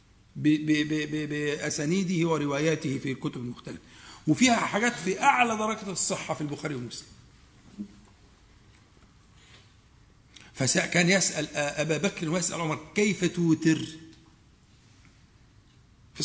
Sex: male